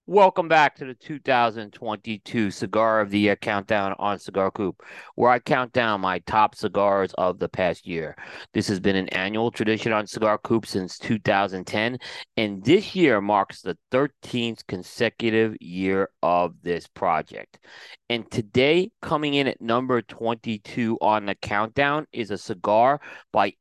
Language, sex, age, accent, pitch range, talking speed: English, male, 40-59, American, 105-140 Hz, 150 wpm